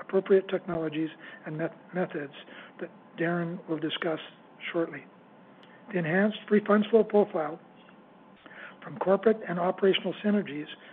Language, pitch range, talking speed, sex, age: English, 170-200 Hz, 115 wpm, male, 60-79